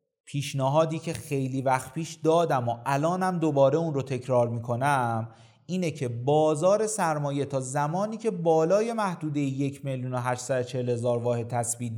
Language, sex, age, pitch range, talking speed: Persian, male, 30-49, 125-170 Hz, 125 wpm